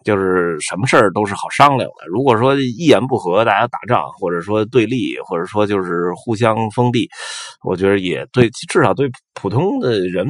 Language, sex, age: Chinese, male, 20-39